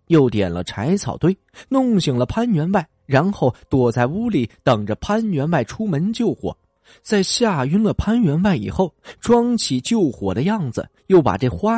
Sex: male